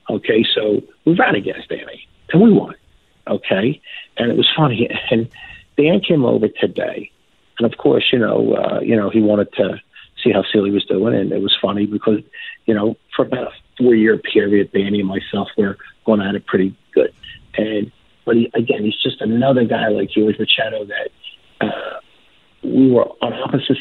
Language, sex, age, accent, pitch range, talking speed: English, male, 50-69, American, 105-145 Hz, 185 wpm